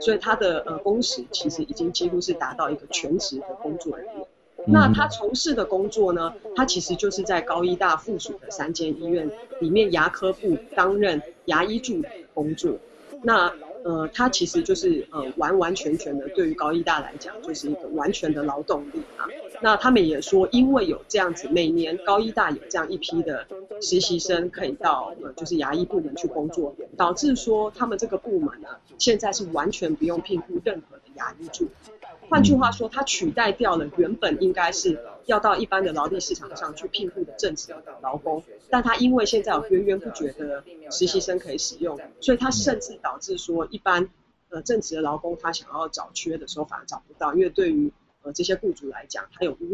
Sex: female